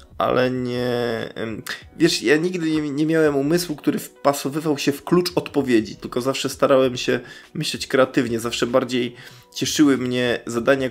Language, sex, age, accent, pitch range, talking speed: Polish, male, 20-39, native, 115-135 Hz, 140 wpm